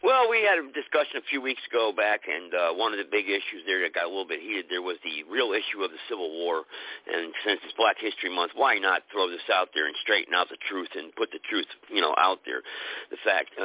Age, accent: 50-69, American